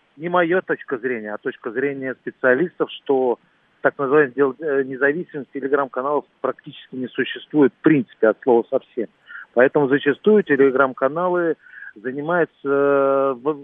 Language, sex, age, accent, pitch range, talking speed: Russian, male, 40-59, native, 130-155 Hz, 110 wpm